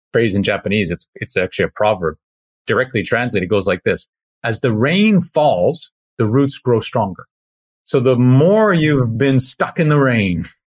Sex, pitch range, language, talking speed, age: male, 90-130 Hz, English, 175 wpm, 30-49